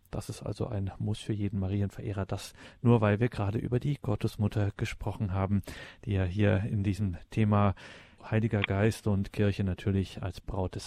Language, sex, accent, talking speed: German, male, German, 175 wpm